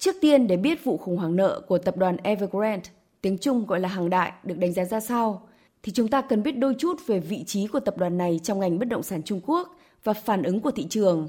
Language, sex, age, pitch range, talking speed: Vietnamese, female, 20-39, 185-250 Hz, 265 wpm